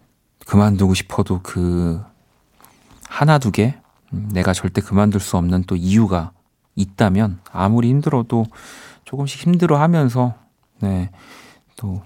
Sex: male